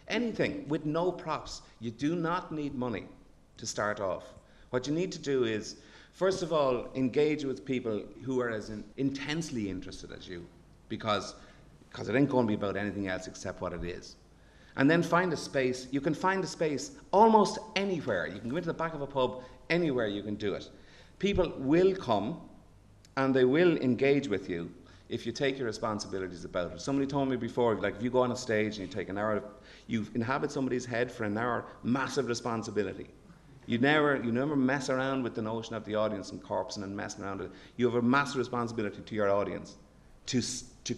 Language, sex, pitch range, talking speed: English, male, 105-140 Hz, 205 wpm